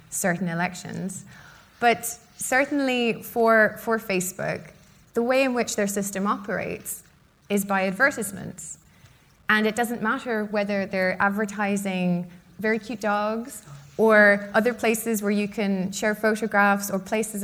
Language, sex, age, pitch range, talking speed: English, female, 20-39, 180-225 Hz, 125 wpm